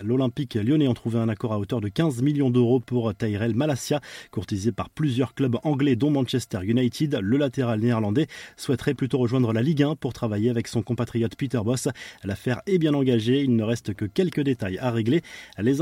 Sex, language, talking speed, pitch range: male, French, 195 wpm, 115-135 Hz